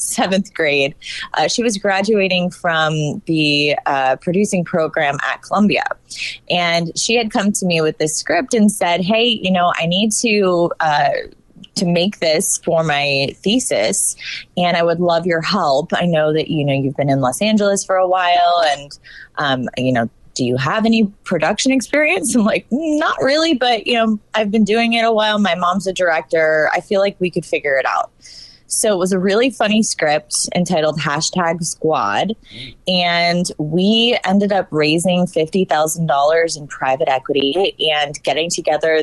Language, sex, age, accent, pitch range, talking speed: English, female, 20-39, American, 150-200 Hz, 175 wpm